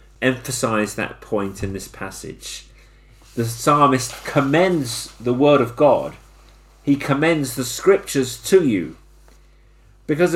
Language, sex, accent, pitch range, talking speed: English, male, British, 115-150 Hz, 115 wpm